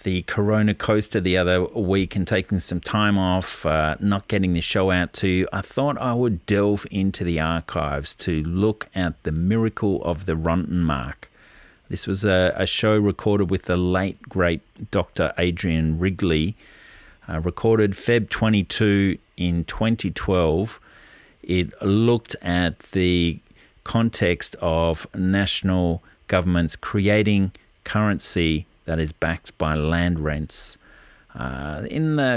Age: 40-59